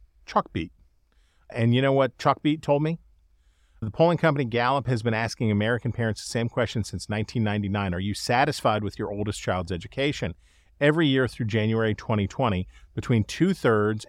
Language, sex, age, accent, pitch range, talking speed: English, male, 40-59, American, 90-115 Hz, 165 wpm